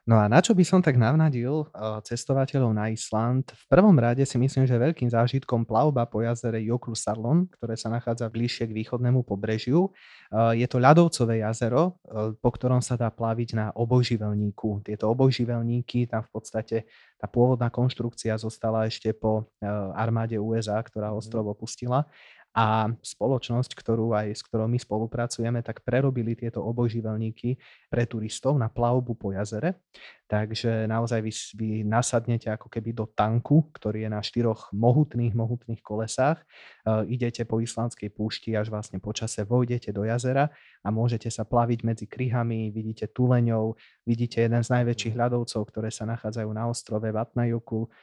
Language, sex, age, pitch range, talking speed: Slovak, male, 20-39, 110-120 Hz, 155 wpm